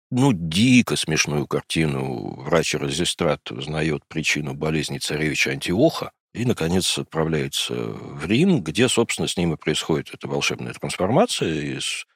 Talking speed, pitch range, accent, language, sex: 130 wpm, 75-125 Hz, native, Russian, male